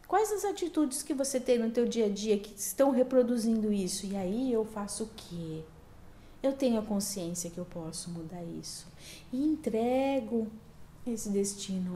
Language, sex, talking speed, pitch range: Portuguese, female, 170 wpm, 195-270 Hz